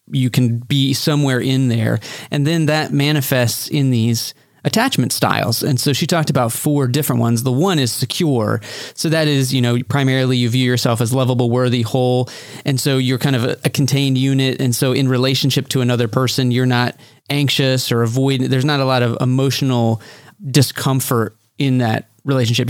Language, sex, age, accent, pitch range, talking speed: English, male, 30-49, American, 115-135 Hz, 185 wpm